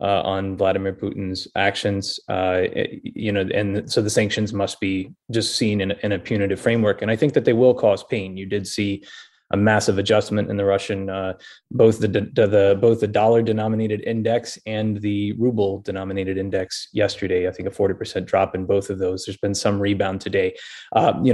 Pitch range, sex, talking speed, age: 100-115 Hz, male, 205 wpm, 20-39